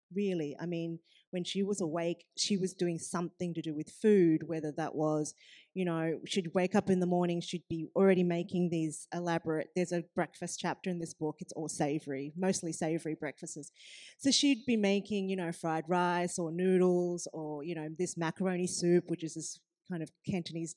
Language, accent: English, Australian